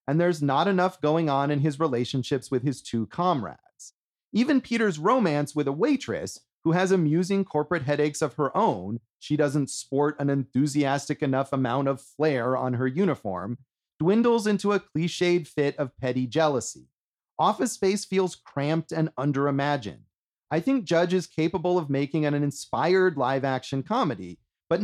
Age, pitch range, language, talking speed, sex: 30-49, 135-170 Hz, English, 155 wpm, male